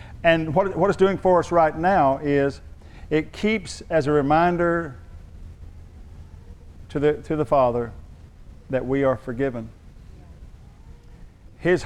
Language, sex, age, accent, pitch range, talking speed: English, male, 50-69, American, 105-160 Hz, 120 wpm